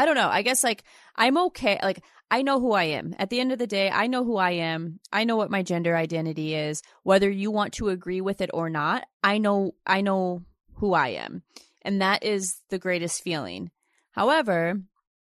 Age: 30-49